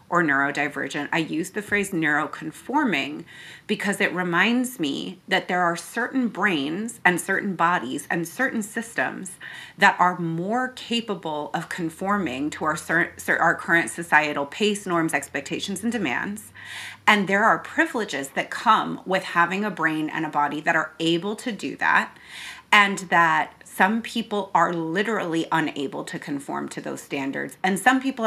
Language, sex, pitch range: English, female, 160-205 Hz